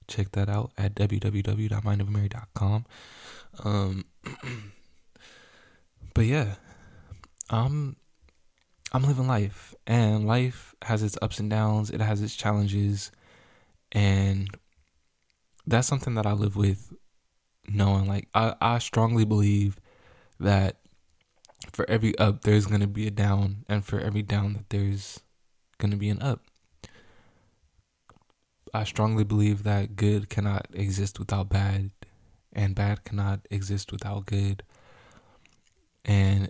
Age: 20-39